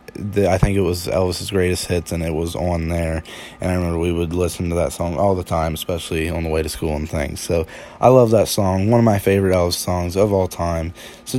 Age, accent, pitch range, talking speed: 20-39, American, 85-105 Hz, 250 wpm